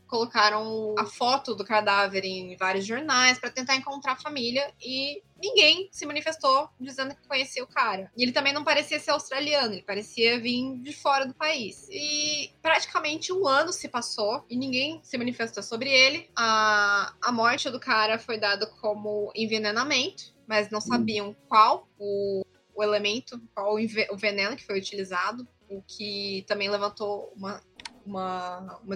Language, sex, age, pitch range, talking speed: Portuguese, female, 20-39, 210-290 Hz, 160 wpm